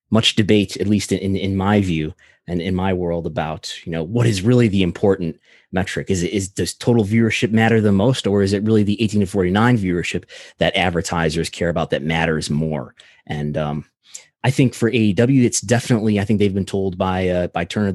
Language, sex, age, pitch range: English, male, 30-49, 90-115 Hz